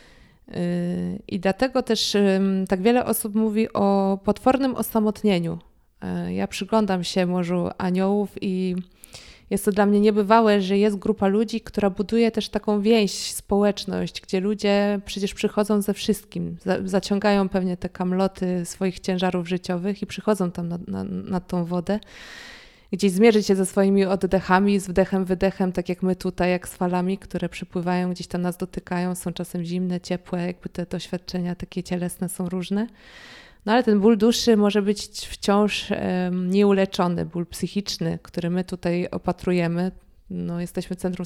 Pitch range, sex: 180-205 Hz, female